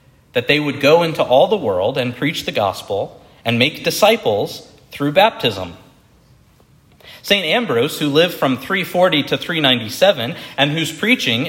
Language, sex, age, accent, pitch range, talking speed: English, male, 40-59, American, 140-190 Hz, 145 wpm